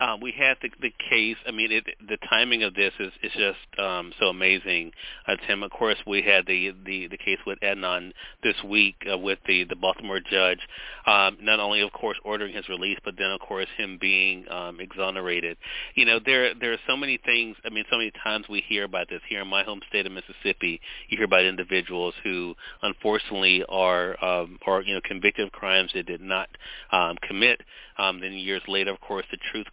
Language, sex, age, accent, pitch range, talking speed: English, male, 30-49, American, 95-120 Hz, 215 wpm